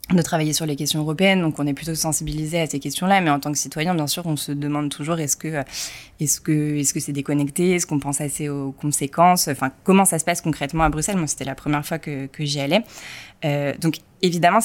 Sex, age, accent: female, 20-39, French